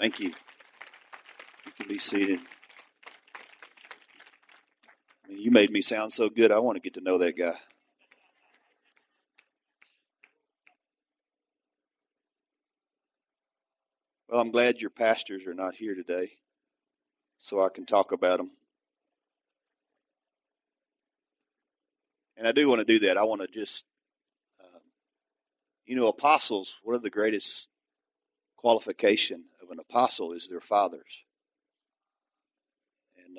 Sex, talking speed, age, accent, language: male, 110 wpm, 40-59, American, English